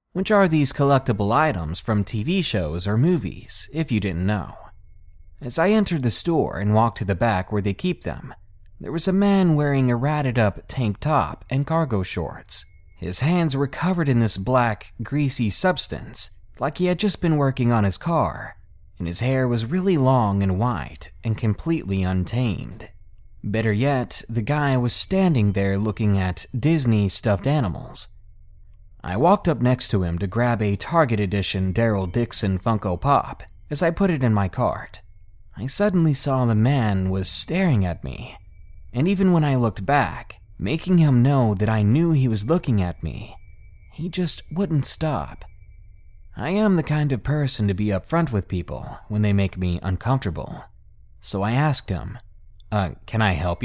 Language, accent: English, American